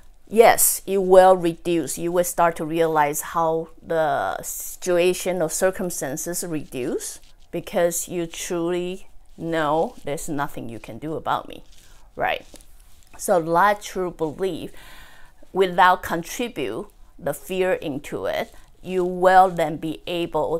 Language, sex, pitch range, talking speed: English, female, 155-185 Hz, 120 wpm